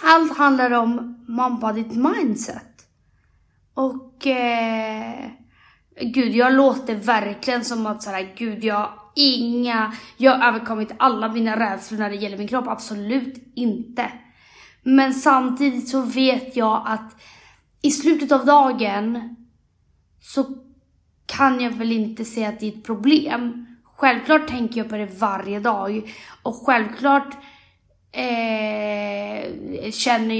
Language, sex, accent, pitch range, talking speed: Swedish, female, native, 220-265 Hz, 125 wpm